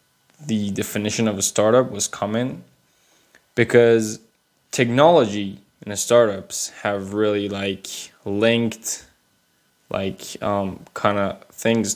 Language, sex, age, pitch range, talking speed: English, male, 10-29, 100-115 Hz, 105 wpm